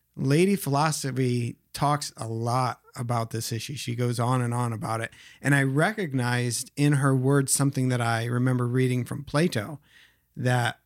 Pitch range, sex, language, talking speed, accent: 120-145 Hz, male, English, 160 wpm, American